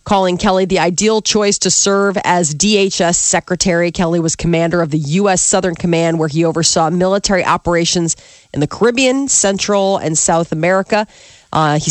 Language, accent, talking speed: English, American, 165 wpm